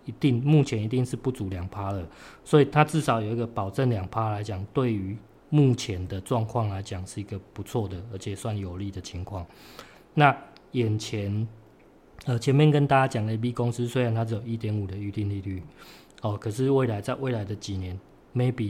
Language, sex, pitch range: Chinese, male, 100-120 Hz